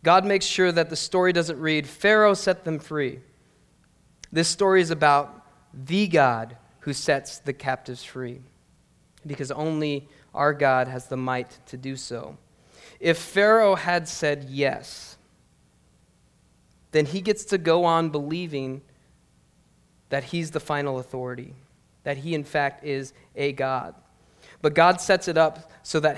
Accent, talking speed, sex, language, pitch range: American, 145 wpm, male, English, 140-165 Hz